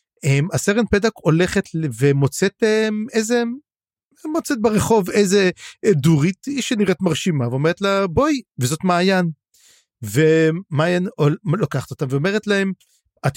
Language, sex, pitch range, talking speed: Hebrew, male, 140-195 Hz, 105 wpm